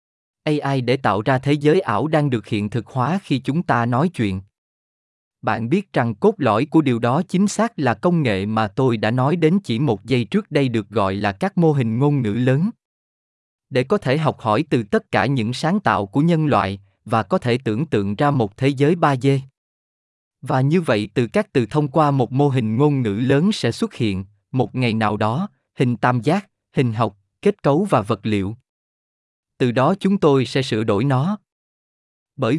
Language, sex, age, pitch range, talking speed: Vietnamese, male, 20-39, 115-160 Hz, 210 wpm